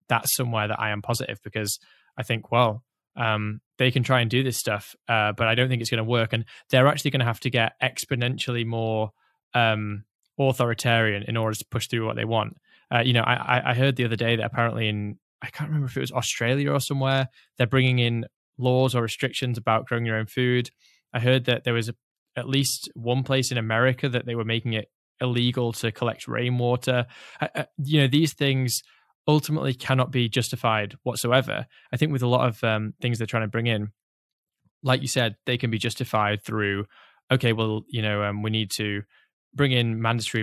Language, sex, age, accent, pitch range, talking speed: English, male, 10-29, British, 110-130 Hz, 210 wpm